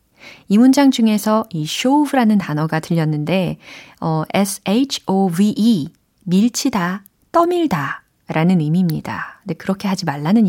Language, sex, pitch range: Korean, female, 170-235 Hz